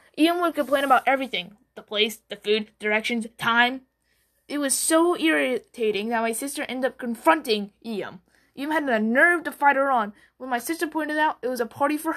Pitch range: 225-300 Hz